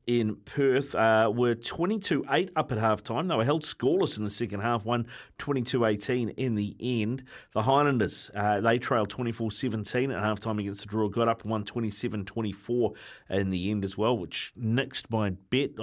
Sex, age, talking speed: male, 30-49, 175 wpm